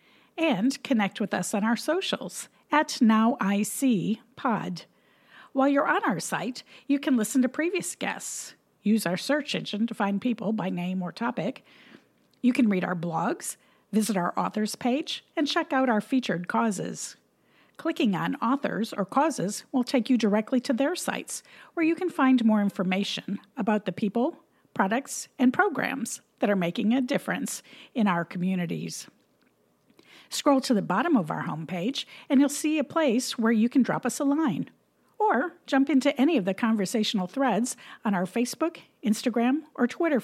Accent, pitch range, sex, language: American, 200-275 Hz, female, English